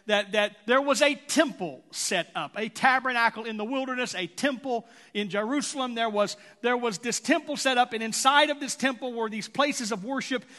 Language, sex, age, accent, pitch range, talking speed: English, male, 40-59, American, 225-280 Hz, 200 wpm